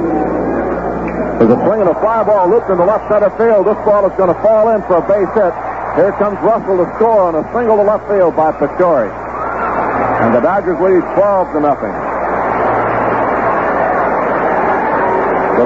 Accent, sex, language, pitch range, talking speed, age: American, male, English, 145-195 Hz, 175 wpm, 60-79